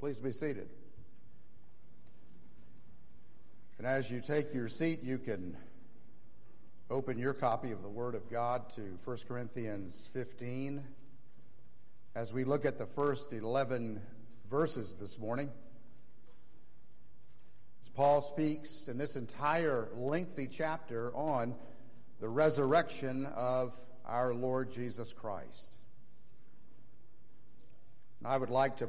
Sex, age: male, 50-69